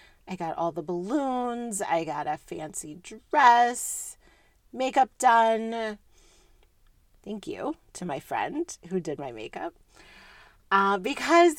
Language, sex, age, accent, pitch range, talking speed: English, female, 30-49, American, 170-280 Hz, 120 wpm